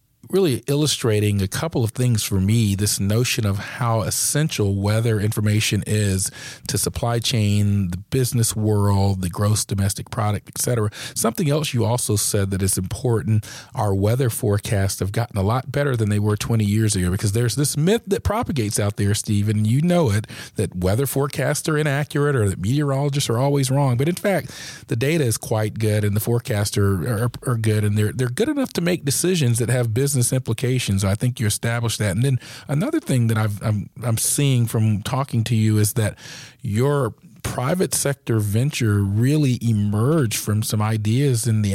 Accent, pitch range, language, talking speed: American, 105-130 Hz, English, 190 wpm